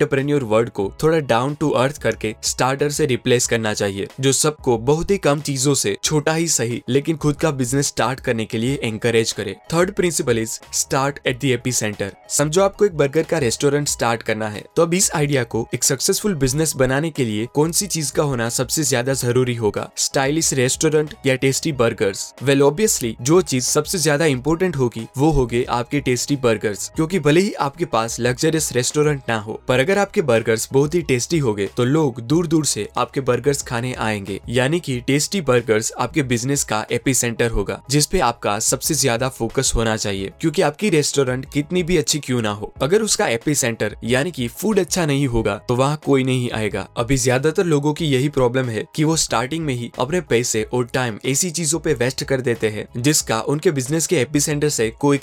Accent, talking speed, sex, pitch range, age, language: native, 200 wpm, male, 120-155 Hz, 10-29, Hindi